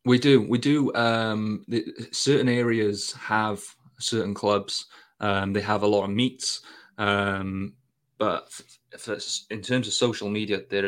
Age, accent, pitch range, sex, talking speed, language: 20-39, British, 100-115 Hz, male, 150 wpm, English